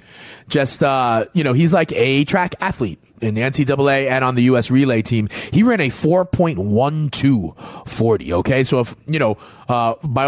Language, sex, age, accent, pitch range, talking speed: English, male, 30-49, American, 115-145 Hz, 170 wpm